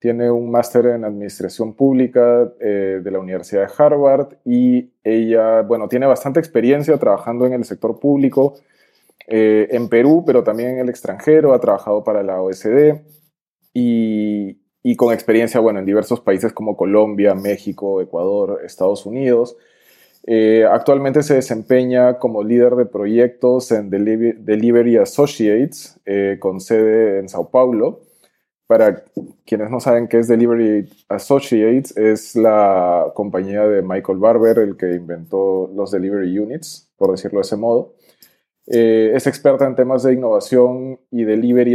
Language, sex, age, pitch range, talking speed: Spanish, male, 20-39, 105-130 Hz, 145 wpm